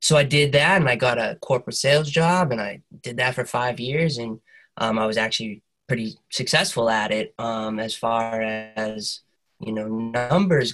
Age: 20-39